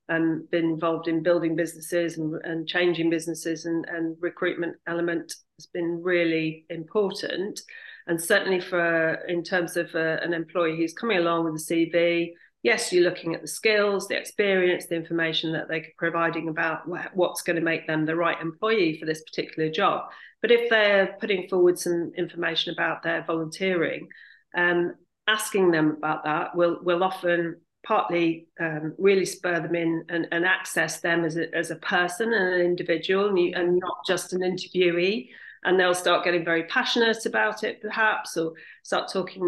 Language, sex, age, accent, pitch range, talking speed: English, female, 40-59, British, 165-180 Hz, 175 wpm